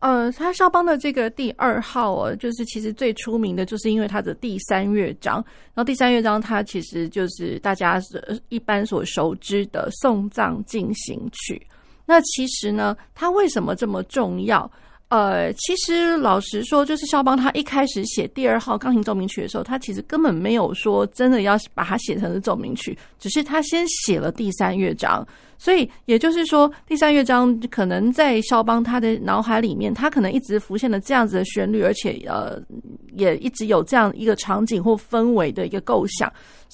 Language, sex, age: Chinese, female, 30-49